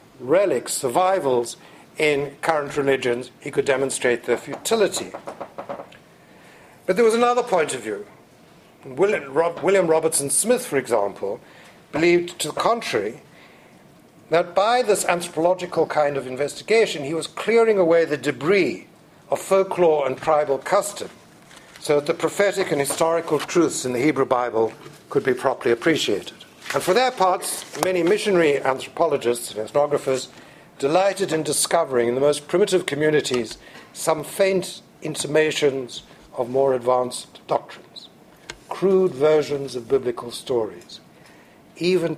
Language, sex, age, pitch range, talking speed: English, male, 60-79, 135-185 Hz, 130 wpm